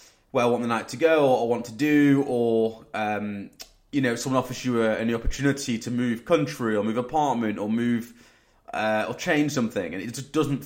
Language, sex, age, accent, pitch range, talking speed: English, male, 20-39, British, 110-130 Hz, 210 wpm